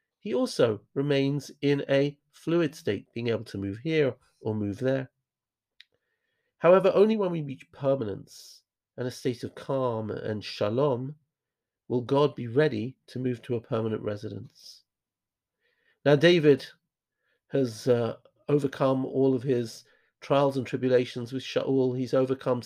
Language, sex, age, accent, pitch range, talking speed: English, male, 50-69, British, 120-145 Hz, 140 wpm